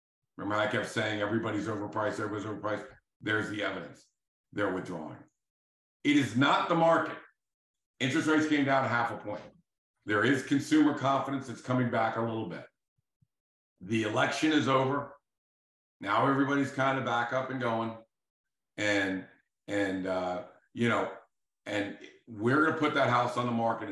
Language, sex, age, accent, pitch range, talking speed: English, male, 50-69, American, 105-135 Hz, 155 wpm